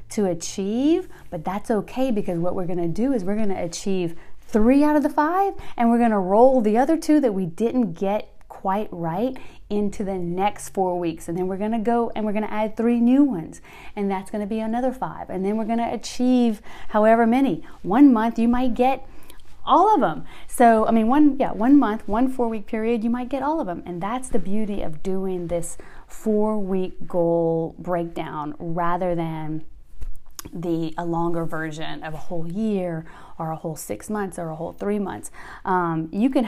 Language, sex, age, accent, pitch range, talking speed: English, female, 30-49, American, 175-235 Hz, 195 wpm